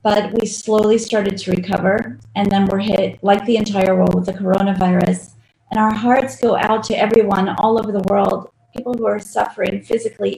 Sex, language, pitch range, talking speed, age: female, English, 190-230 Hz, 190 wpm, 30-49